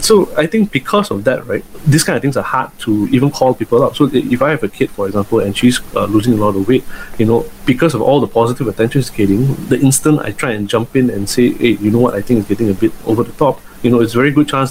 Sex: male